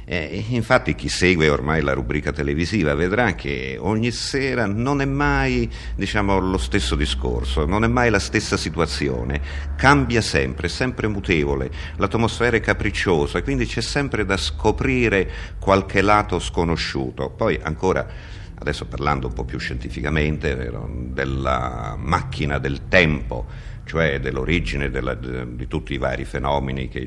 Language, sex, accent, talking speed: Italian, male, native, 140 wpm